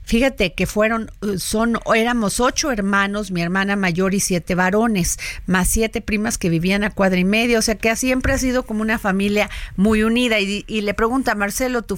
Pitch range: 185-235 Hz